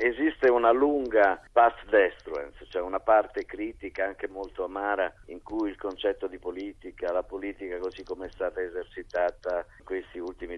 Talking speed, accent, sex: 160 wpm, native, male